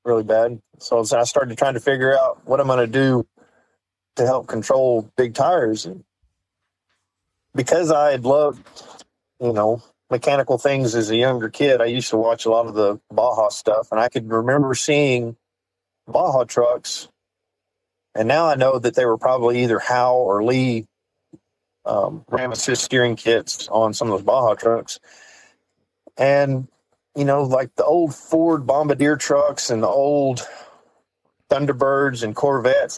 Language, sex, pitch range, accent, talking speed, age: English, male, 115-135 Hz, American, 155 wpm, 40-59